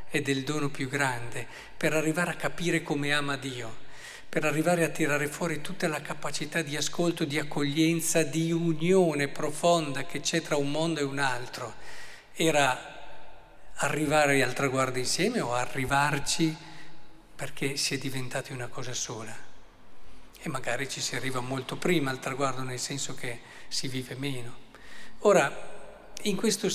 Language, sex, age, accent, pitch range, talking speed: Italian, male, 50-69, native, 140-175 Hz, 150 wpm